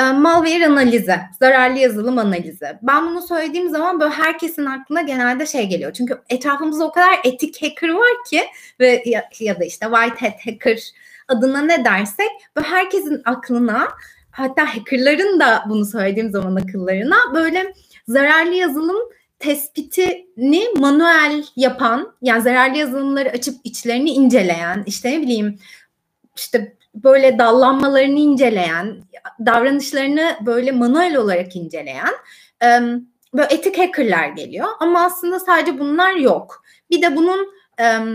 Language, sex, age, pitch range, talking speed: Turkish, female, 30-49, 235-325 Hz, 125 wpm